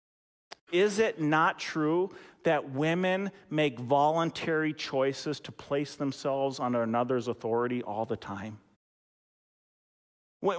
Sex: male